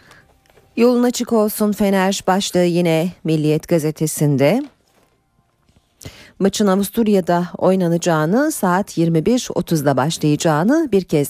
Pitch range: 155-210 Hz